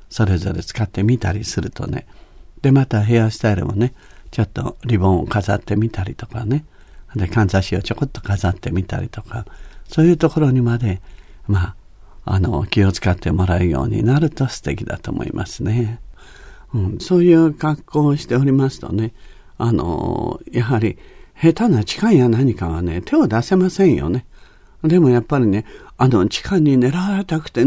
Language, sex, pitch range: Japanese, male, 100-145 Hz